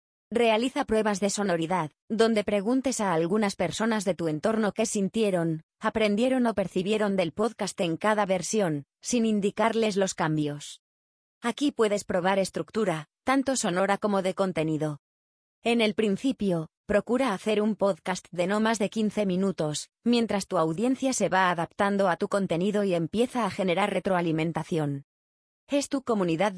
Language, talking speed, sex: Spanish, 145 wpm, female